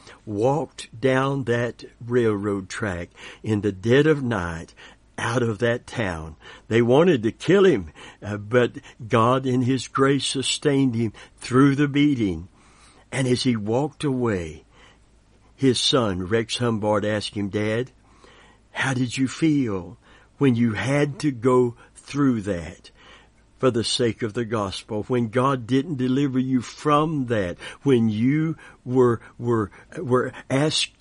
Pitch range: 105-130 Hz